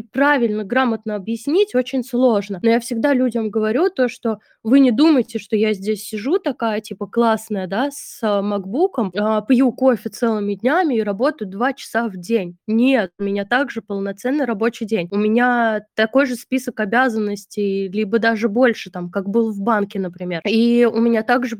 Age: 20-39